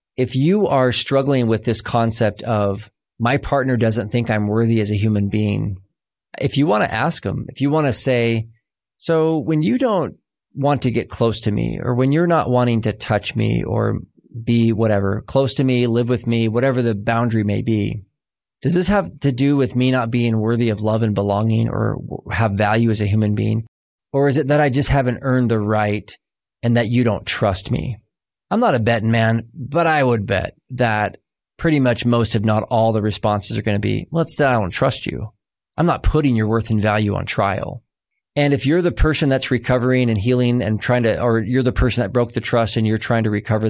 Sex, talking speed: male, 220 wpm